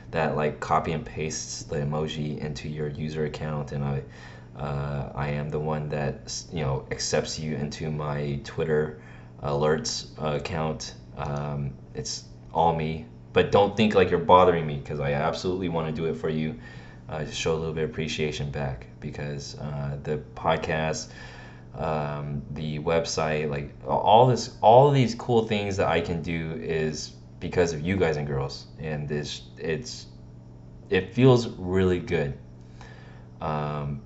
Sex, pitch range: male, 70-80 Hz